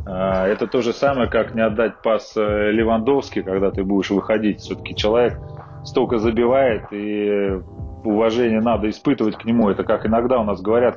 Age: 30-49